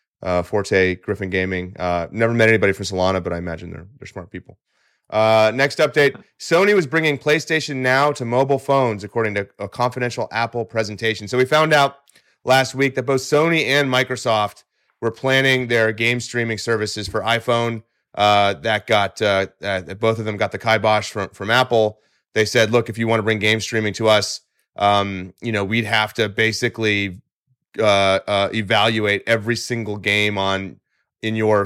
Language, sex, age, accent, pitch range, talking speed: English, male, 30-49, American, 105-125 Hz, 180 wpm